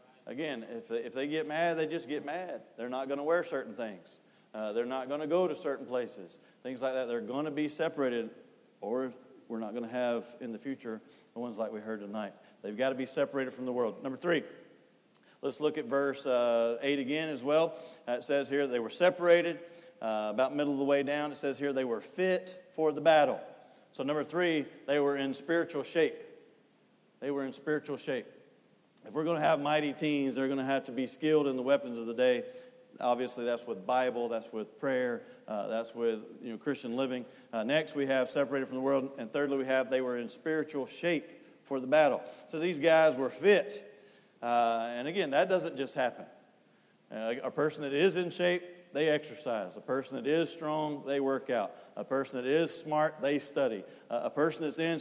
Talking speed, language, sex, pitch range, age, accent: 215 wpm, English, male, 130-160 Hz, 40-59, American